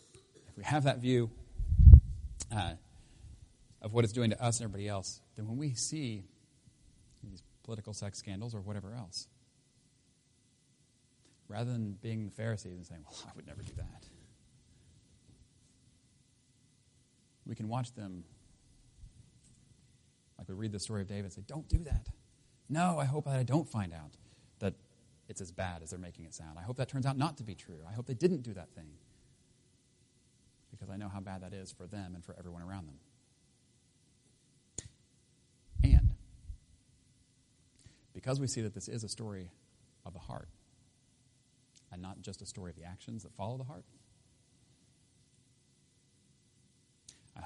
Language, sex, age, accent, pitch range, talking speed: English, male, 30-49, American, 95-125 Hz, 155 wpm